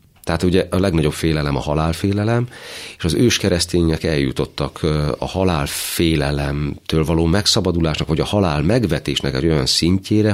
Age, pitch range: 40-59, 75-95 Hz